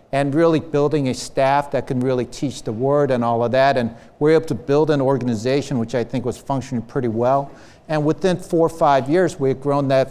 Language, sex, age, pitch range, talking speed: English, male, 50-69, 130-170 Hz, 235 wpm